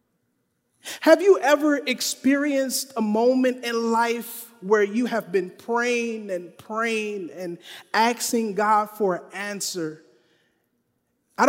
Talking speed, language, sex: 115 wpm, English, male